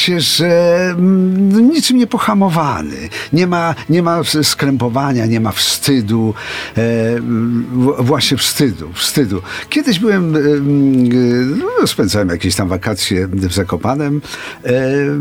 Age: 50-69